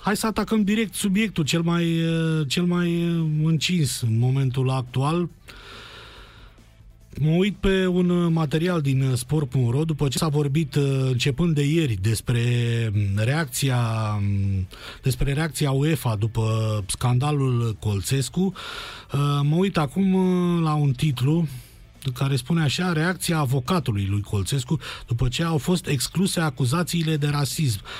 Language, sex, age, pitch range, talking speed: Romanian, male, 30-49, 125-165 Hz, 115 wpm